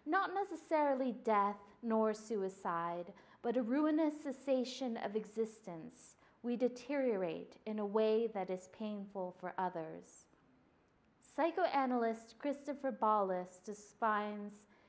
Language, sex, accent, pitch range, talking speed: English, female, American, 195-270 Hz, 100 wpm